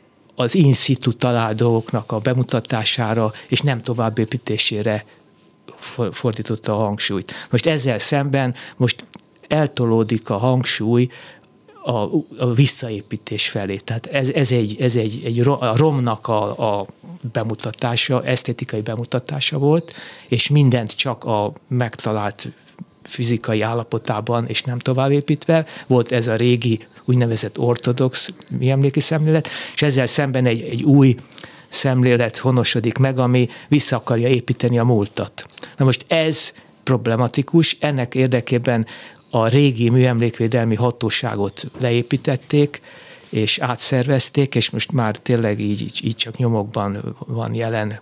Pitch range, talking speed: 115-135 Hz, 120 wpm